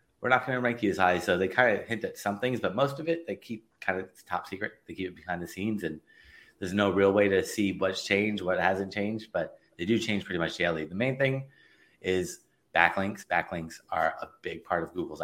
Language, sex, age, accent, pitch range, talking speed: English, male, 30-49, American, 95-115 Hz, 250 wpm